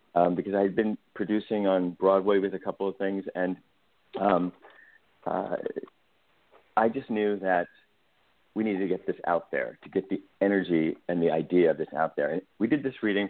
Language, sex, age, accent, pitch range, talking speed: English, male, 40-59, American, 90-105 Hz, 195 wpm